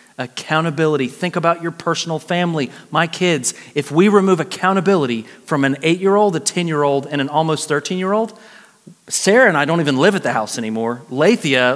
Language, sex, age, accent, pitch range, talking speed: English, male, 30-49, American, 135-190 Hz, 165 wpm